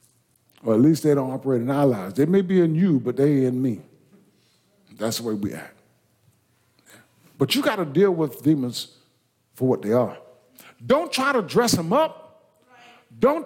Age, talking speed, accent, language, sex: 50-69, 185 wpm, American, English, male